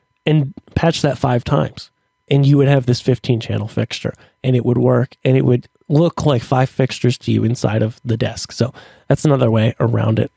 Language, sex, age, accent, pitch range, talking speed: English, male, 30-49, American, 120-150 Hz, 205 wpm